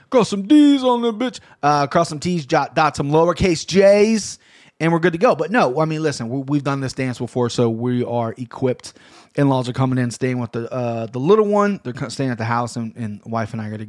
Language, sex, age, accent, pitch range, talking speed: English, male, 30-49, American, 115-145 Hz, 245 wpm